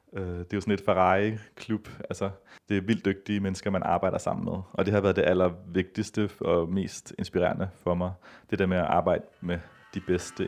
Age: 30-49